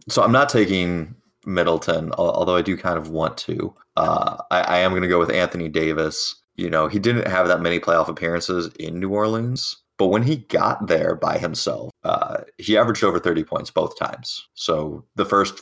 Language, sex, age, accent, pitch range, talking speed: English, male, 30-49, American, 80-100 Hz, 200 wpm